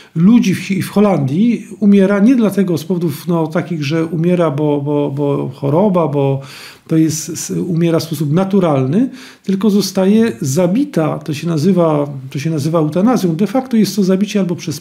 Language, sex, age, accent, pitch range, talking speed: Polish, male, 40-59, native, 165-205 Hz, 160 wpm